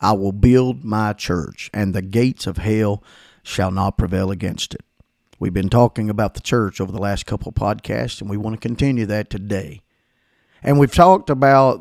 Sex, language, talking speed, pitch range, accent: male, English, 195 wpm, 100-130 Hz, American